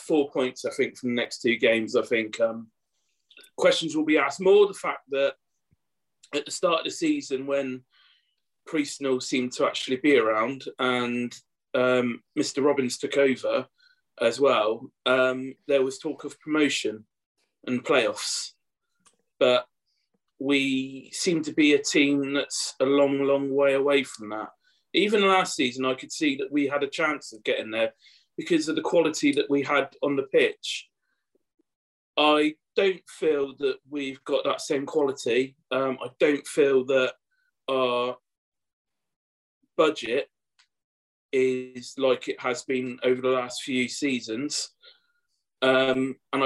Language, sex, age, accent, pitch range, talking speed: English, male, 30-49, British, 125-150 Hz, 150 wpm